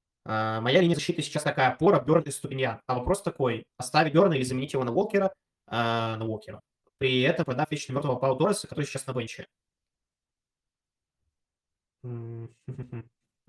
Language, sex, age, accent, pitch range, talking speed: Russian, male, 20-39, native, 120-145 Hz, 160 wpm